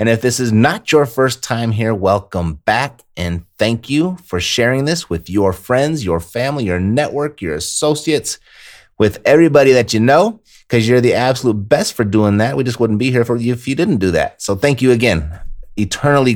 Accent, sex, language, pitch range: American, male, English, 95-120 Hz